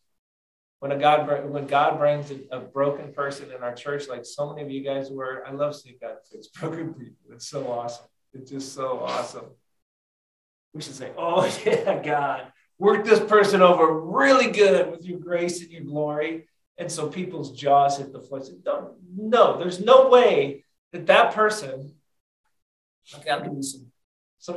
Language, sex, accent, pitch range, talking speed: English, male, American, 125-165 Hz, 175 wpm